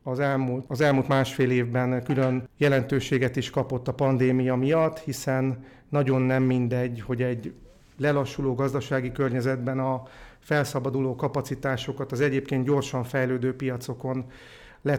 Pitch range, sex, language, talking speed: 130-145 Hz, male, Hungarian, 125 wpm